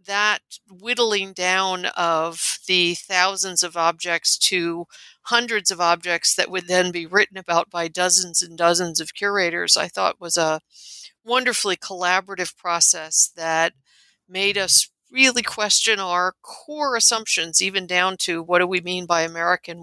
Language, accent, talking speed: English, American, 145 wpm